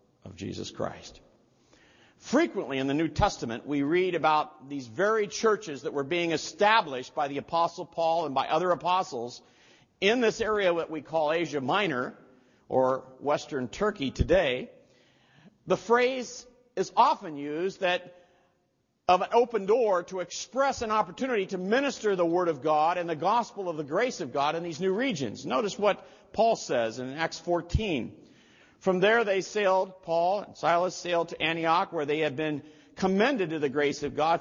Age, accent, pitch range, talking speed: 50-69, American, 165-220 Hz, 170 wpm